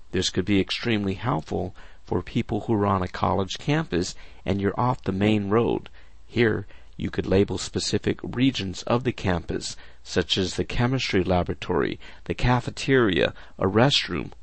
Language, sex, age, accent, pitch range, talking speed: English, male, 50-69, American, 90-130 Hz, 155 wpm